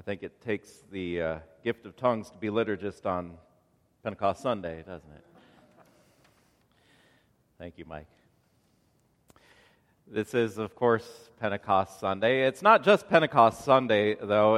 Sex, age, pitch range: male, 40-59, 100-135 Hz